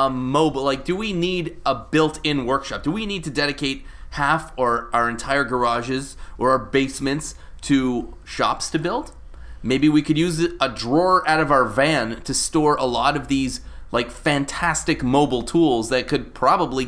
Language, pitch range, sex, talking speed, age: English, 110-145 Hz, male, 175 wpm, 30-49